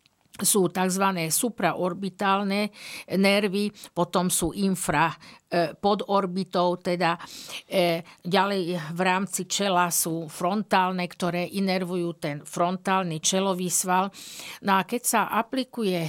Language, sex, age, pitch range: Slovak, female, 50-69, 175-200 Hz